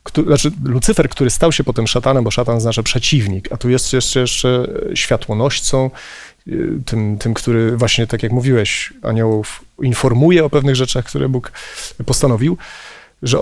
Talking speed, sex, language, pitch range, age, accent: 150 wpm, male, Polish, 120-155 Hz, 30-49, native